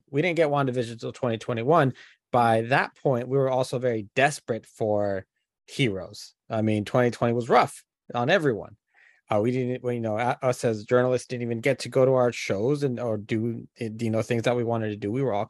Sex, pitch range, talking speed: male, 115-135 Hz, 210 wpm